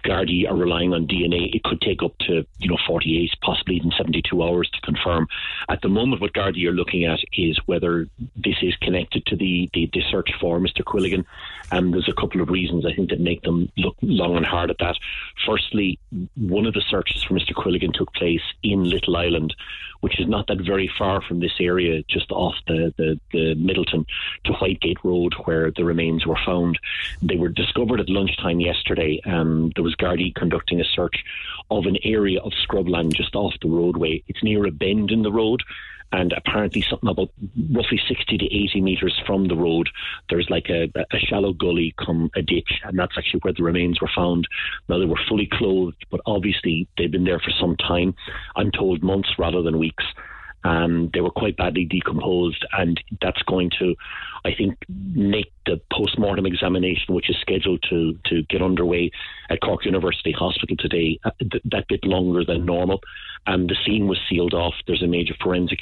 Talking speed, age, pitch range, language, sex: 200 wpm, 30-49, 85-95 Hz, English, male